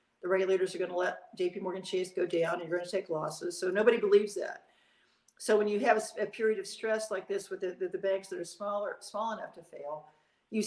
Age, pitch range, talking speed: 50-69, 175-205 Hz, 245 wpm